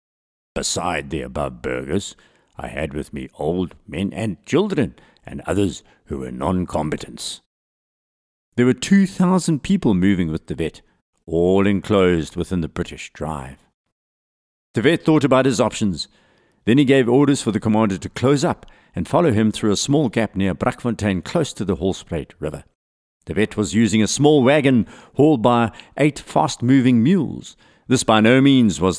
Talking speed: 165 wpm